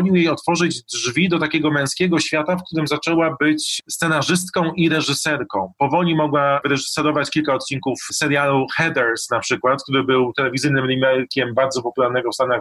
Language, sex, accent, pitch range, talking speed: Polish, male, native, 130-155 Hz, 150 wpm